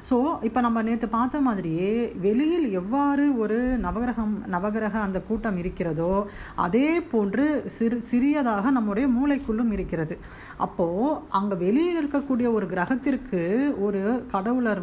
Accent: native